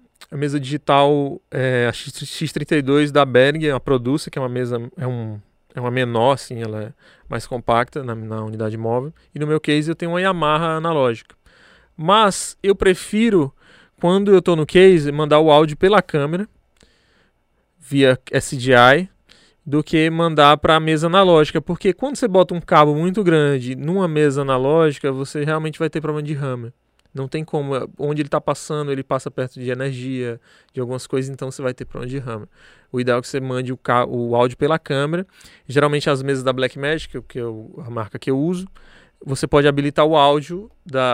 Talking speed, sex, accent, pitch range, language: 185 wpm, male, Brazilian, 130-165 Hz, Portuguese